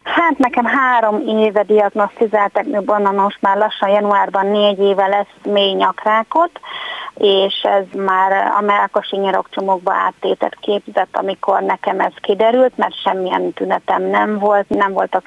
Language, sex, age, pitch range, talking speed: Hungarian, female, 30-49, 190-225 Hz, 135 wpm